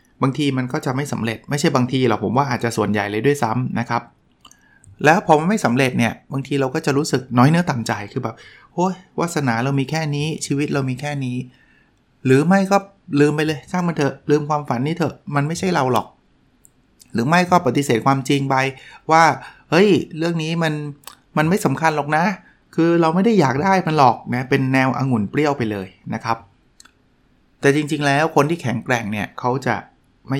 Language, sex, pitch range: Thai, male, 120-155 Hz